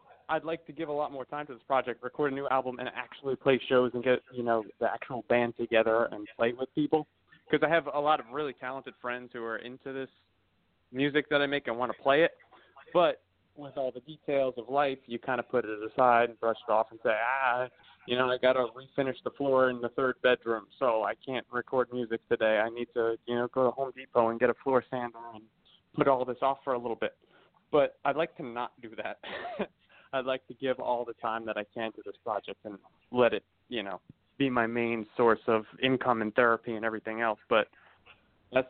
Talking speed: 235 wpm